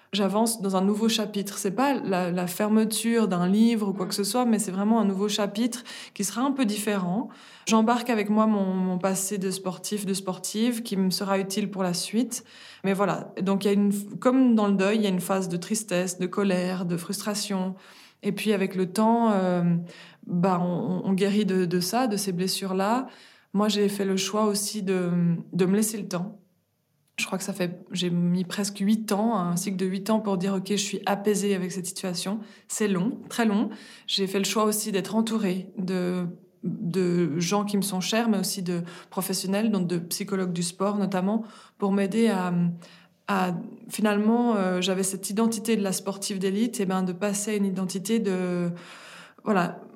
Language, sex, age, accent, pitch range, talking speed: French, female, 20-39, French, 185-215 Hz, 205 wpm